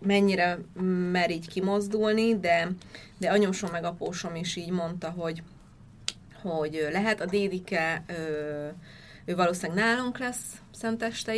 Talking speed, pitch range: 120 wpm, 175-215 Hz